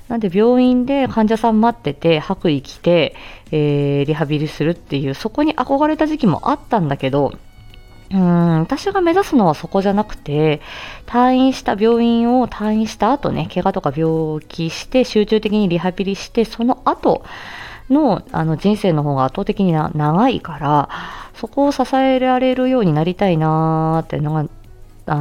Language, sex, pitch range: Japanese, female, 145-225 Hz